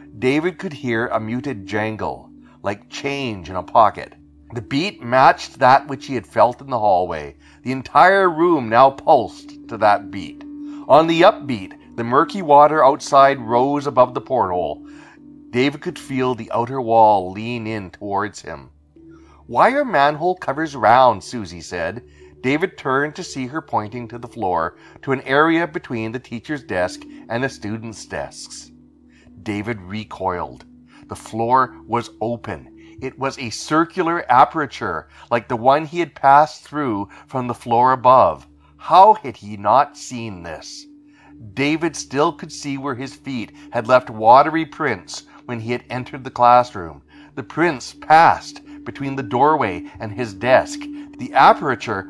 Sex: male